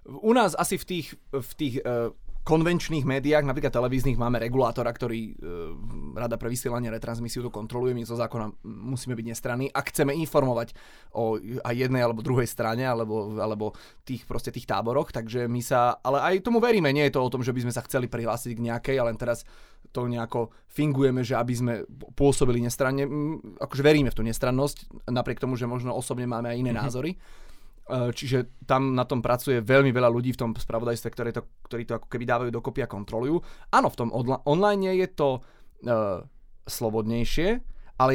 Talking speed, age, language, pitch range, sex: 180 wpm, 20-39, Slovak, 115-140 Hz, male